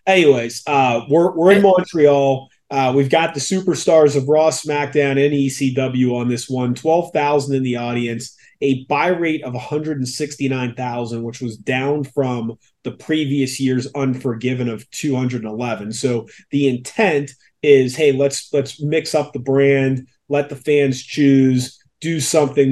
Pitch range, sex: 125-145 Hz, male